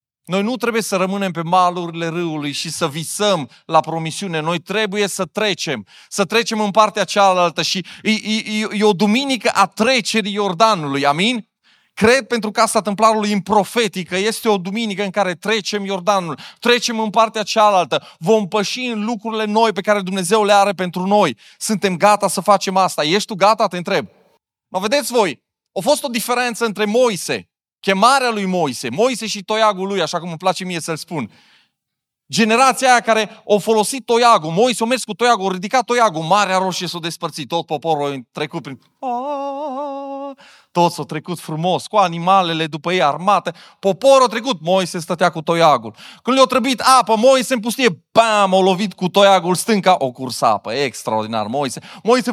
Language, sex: Romanian, male